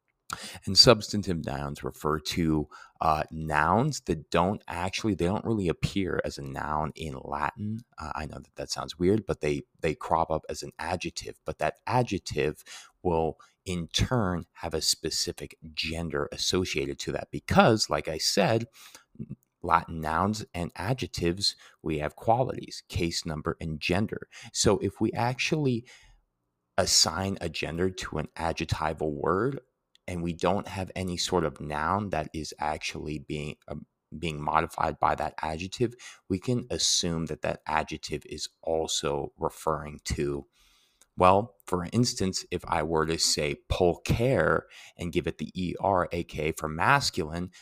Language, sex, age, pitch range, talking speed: English, male, 30-49, 80-95 Hz, 150 wpm